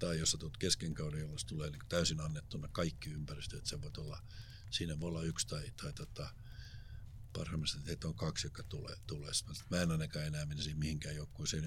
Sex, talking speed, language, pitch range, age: male, 185 wpm, Finnish, 80-105 Hz, 60-79